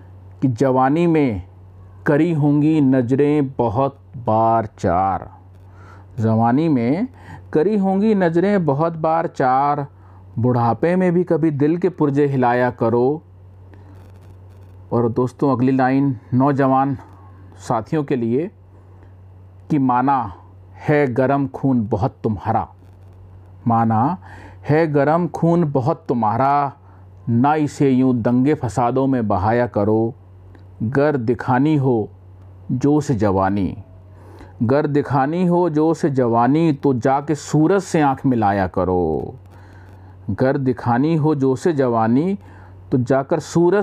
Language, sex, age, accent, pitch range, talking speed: Hindi, male, 40-59, native, 95-145 Hz, 110 wpm